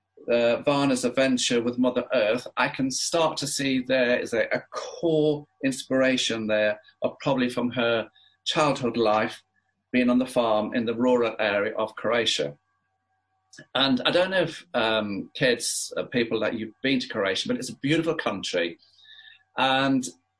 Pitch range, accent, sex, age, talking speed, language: 110-145 Hz, British, male, 40-59, 160 wpm, English